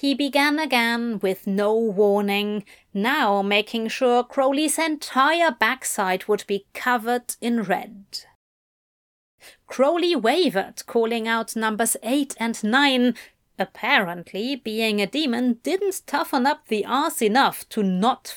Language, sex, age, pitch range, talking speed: English, female, 30-49, 205-270 Hz, 120 wpm